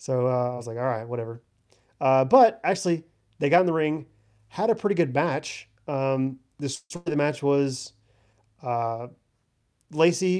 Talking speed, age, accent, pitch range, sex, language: 160 wpm, 30-49, American, 130-160 Hz, male, English